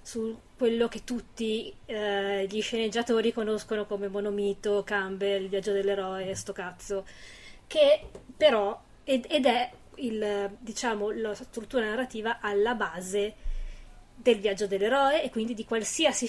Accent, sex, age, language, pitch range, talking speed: native, female, 20-39, Italian, 205-240 Hz, 135 wpm